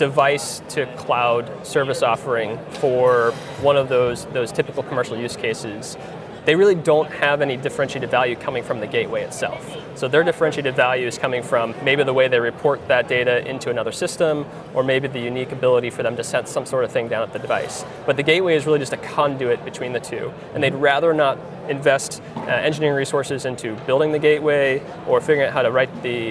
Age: 20-39